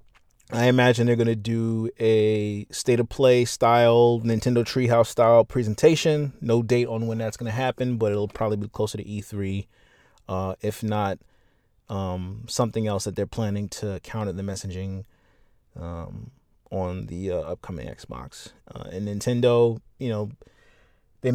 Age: 30-49